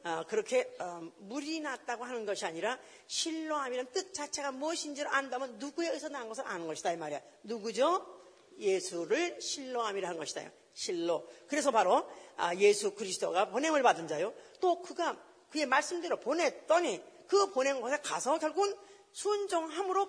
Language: Korean